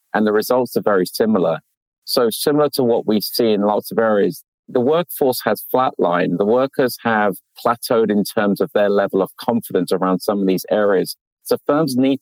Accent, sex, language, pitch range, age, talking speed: British, male, English, 100-115 Hz, 40-59, 190 wpm